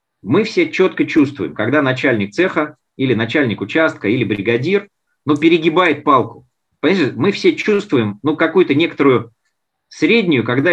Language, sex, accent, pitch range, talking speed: Russian, male, native, 120-205 Hz, 135 wpm